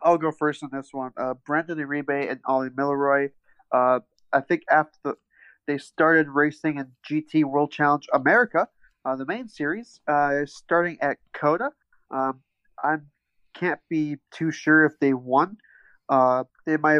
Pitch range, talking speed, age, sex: 135-155 Hz, 160 wpm, 30-49, male